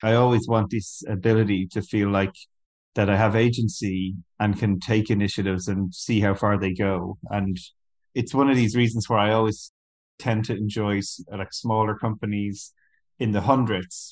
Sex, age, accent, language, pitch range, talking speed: male, 30-49, Irish, English, 95-115 Hz, 165 wpm